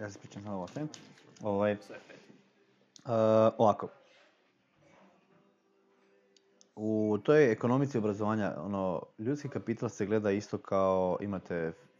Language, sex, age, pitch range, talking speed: Croatian, male, 20-39, 100-135 Hz, 105 wpm